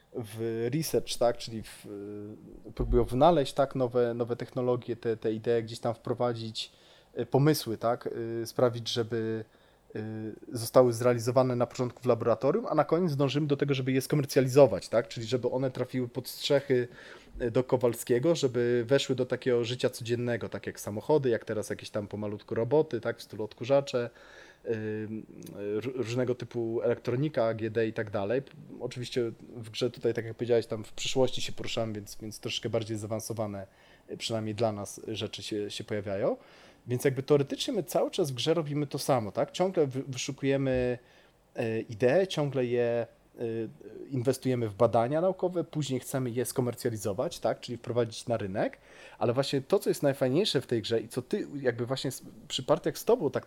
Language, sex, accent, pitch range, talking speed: Polish, male, native, 115-135 Hz, 160 wpm